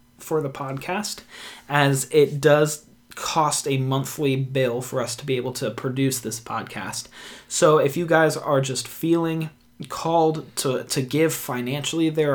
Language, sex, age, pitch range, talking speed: English, male, 20-39, 125-155 Hz, 155 wpm